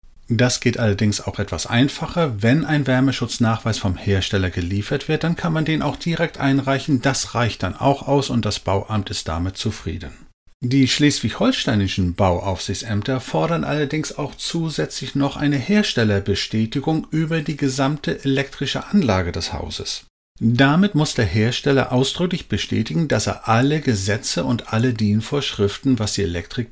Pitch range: 100-140 Hz